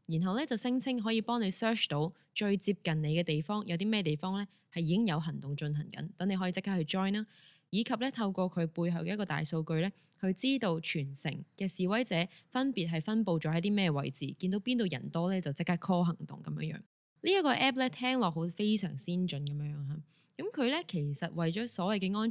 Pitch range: 160-205 Hz